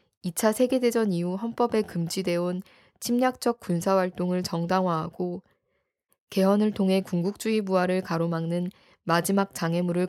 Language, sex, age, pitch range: Korean, female, 20-39, 170-200 Hz